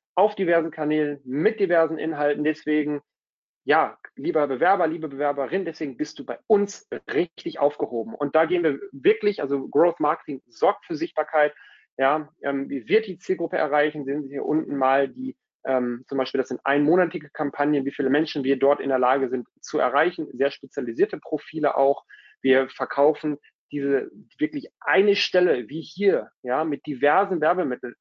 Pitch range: 140-180 Hz